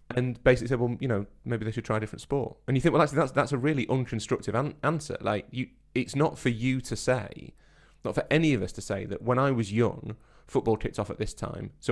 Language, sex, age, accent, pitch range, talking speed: English, male, 30-49, British, 105-125 Hz, 260 wpm